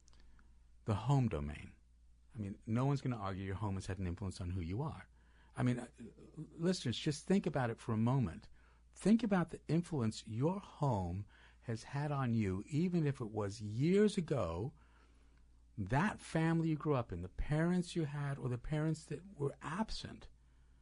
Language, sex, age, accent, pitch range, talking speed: English, male, 50-69, American, 80-130 Hz, 180 wpm